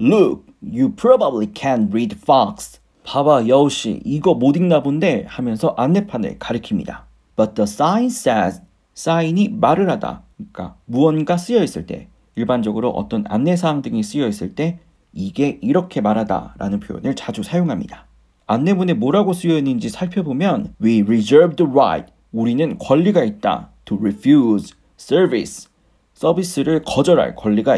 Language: Korean